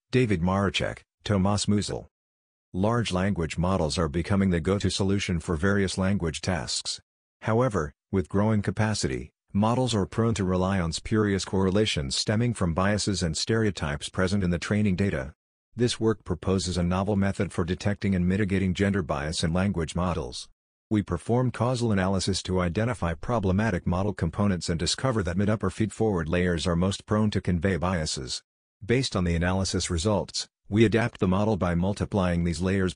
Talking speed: 160 wpm